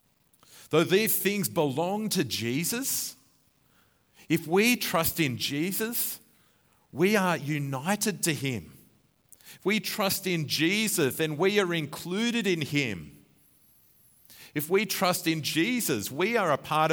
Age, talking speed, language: 40-59, 130 wpm, English